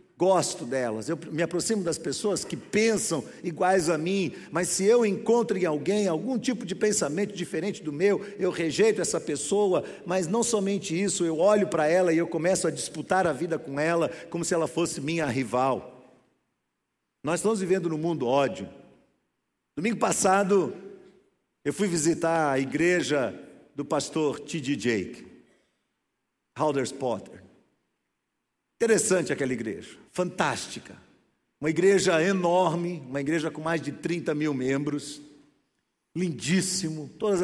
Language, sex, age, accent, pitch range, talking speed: Portuguese, male, 50-69, Brazilian, 155-200 Hz, 140 wpm